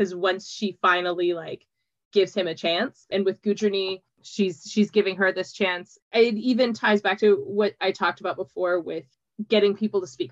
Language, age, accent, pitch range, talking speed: English, 20-39, American, 180-220 Hz, 190 wpm